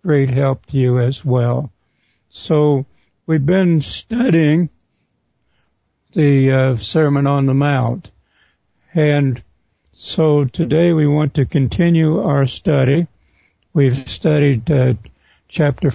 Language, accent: English, American